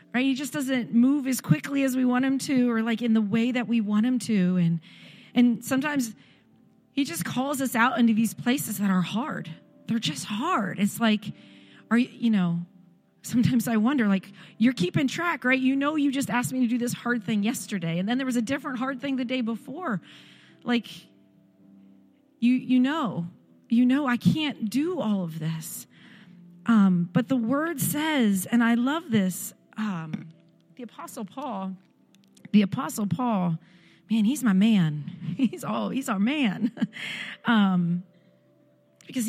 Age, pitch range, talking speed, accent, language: 40-59, 190-245 Hz, 175 wpm, American, English